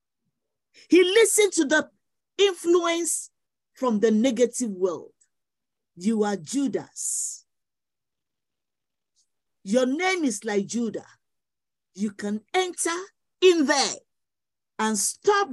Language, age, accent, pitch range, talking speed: English, 50-69, Nigerian, 210-320 Hz, 95 wpm